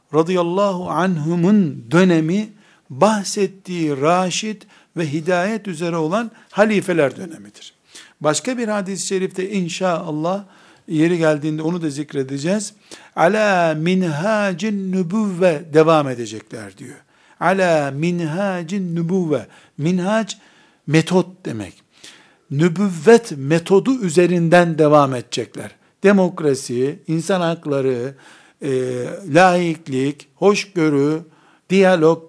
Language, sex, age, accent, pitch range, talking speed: Turkish, male, 60-79, native, 155-195 Hz, 85 wpm